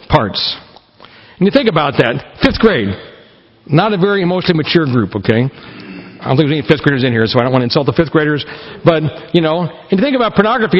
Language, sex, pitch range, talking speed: English, male, 145-195 Hz, 230 wpm